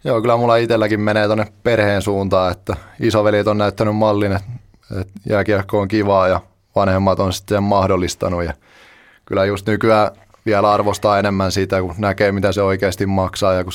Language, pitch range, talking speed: Finnish, 95-105 Hz, 170 wpm